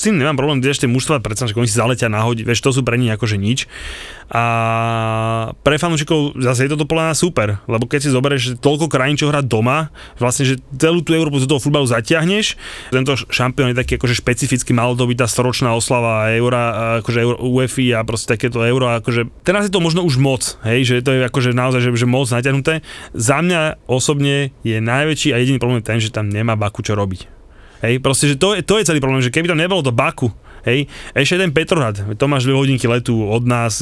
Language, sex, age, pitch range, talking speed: Slovak, male, 20-39, 115-140 Hz, 220 wpm